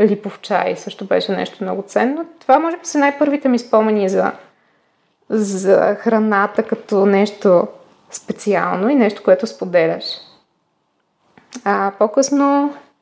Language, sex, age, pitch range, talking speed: Bulgarian, female, 20-39, 210-270 Hz, 125 wpm